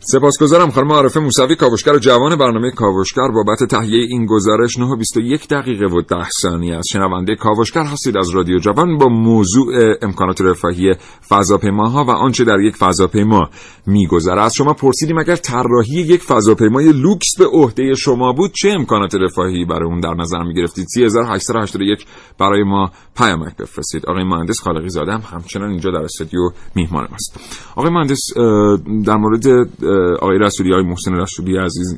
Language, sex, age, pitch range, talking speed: Persian, male, 40-59, 90-125 Hz, 160 wpm